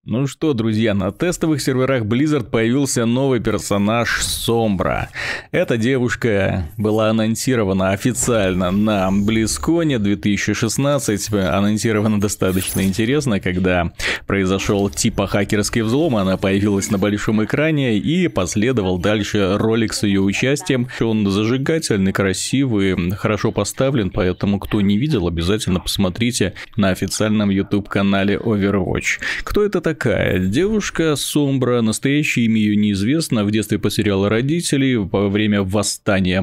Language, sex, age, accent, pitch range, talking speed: Russian, male, 20-39, native, 100-120 Hz, 115 wpm